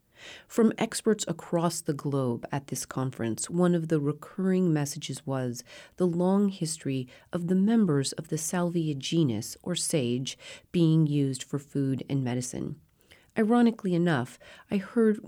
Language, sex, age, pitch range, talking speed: English, female, 40-59, 140-195 Hz, 140 wpm